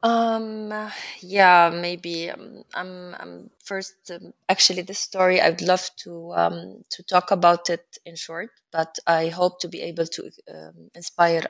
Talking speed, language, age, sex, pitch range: 165 wpm, English, 20-39, female, 155-180 Hz